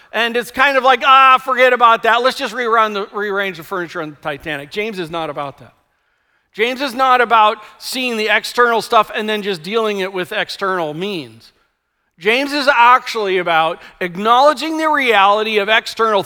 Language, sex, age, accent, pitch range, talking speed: English, male, 40-59, American, 175-230 Hz, 180 wpm